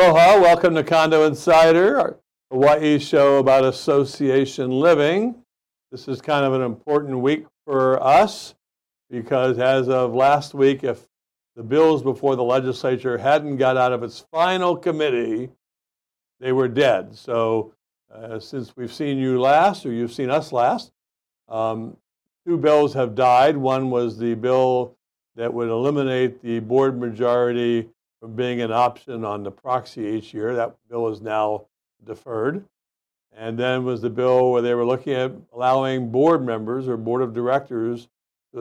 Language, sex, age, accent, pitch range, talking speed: English, male, 60-79, American, 115-140 Hz, 155 wpm